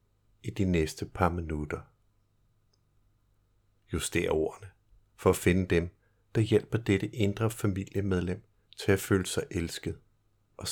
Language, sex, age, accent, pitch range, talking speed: Danish, male, 60-79, native, 95-110 Hz, 125 wpm